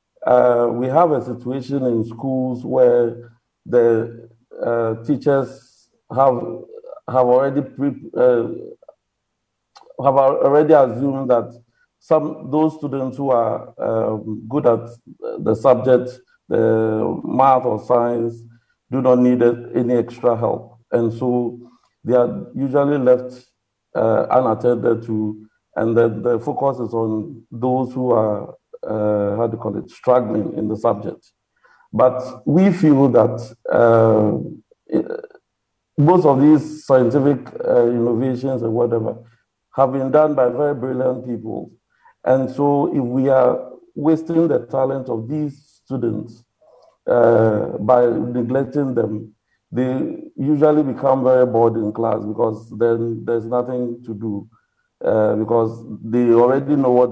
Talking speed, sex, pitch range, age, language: 125 wpm, male, 115-135 Hz, 50-69, English